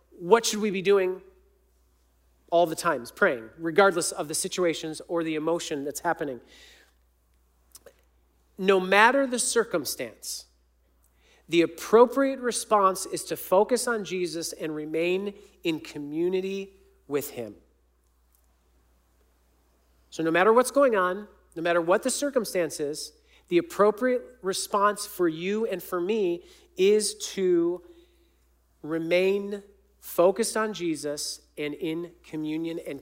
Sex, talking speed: male, 120 wpm